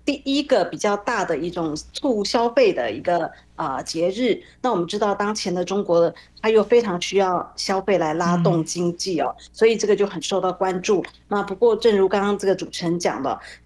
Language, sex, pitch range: Chinese, female, 175-225 Hz